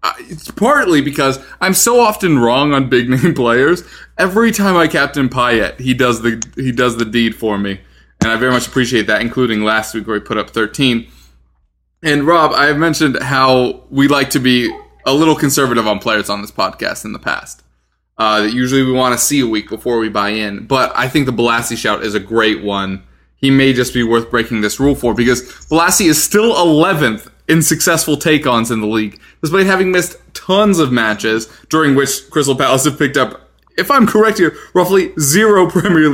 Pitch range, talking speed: 115-150 Hz, 210 wpm